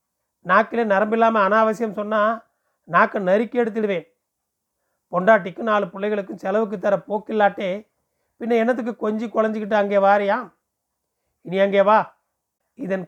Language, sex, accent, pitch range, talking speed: Tamil, male, native, 185-225 Hz, 105 wpm